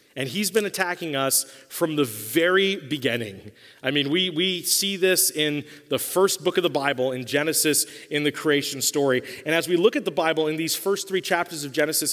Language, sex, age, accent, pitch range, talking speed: English, male, 30-49, American, 150-185 Hz, 210 wpm